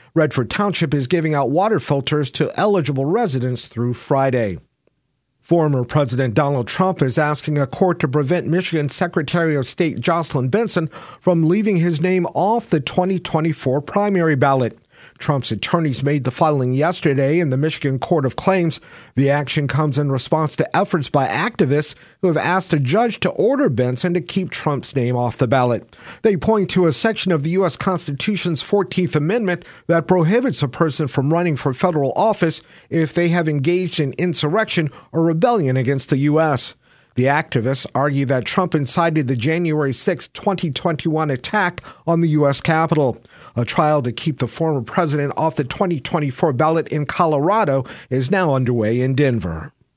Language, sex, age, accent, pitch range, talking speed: English, male, 50-69, American, 135-175 Hz, 165 wpm